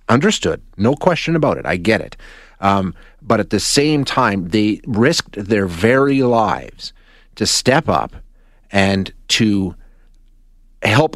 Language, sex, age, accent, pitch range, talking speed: English, male, 30-49, American, 95-115 Hz, 135 wpm